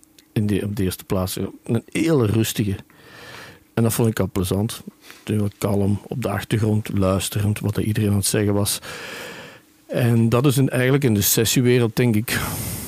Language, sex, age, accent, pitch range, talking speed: Dutch, male, 50-69, Dutch, 95-115 Hz, 160 wpm